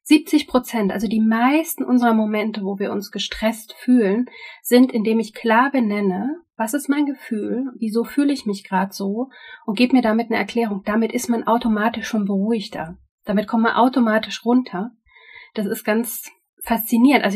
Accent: German